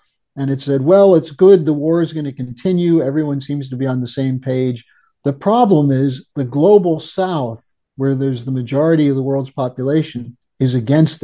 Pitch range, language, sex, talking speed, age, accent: 130-165 Hz, English, male, 190 wpm, 50-69, American